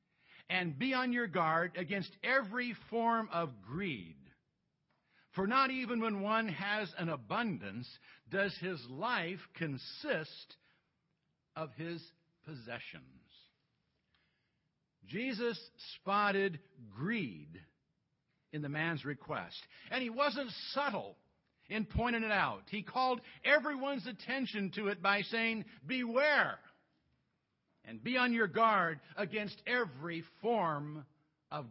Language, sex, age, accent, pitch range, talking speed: English, male, 60-79, American, 160-240 Hz, 110 wpm